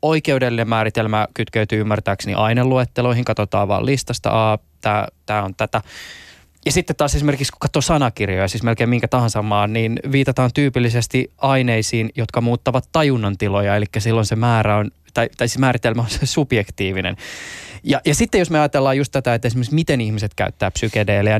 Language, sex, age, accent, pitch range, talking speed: Finnish, male, 20-39, native, 105-130 Hz, 155 wpm